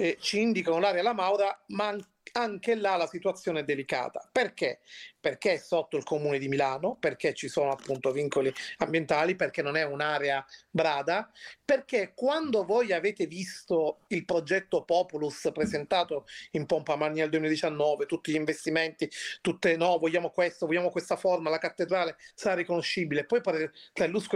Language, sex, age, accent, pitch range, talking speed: Italian, male, 40-59, native, 160-215 Hz, 155 wpm